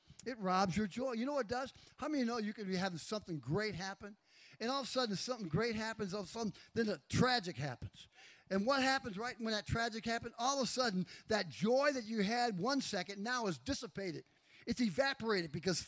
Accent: American